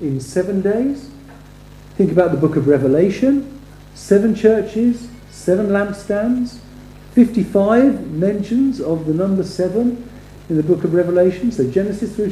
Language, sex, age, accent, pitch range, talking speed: English, male, 50-69, British, 145-210 Hz, 130 wpm